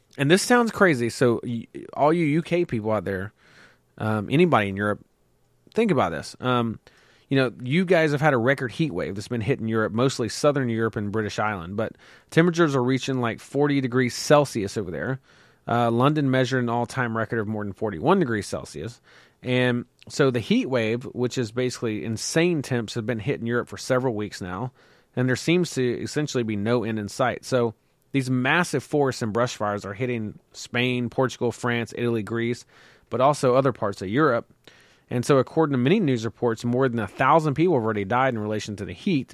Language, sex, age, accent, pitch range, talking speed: English, male, 30-49, American, 115-135 Hz, 200 wpm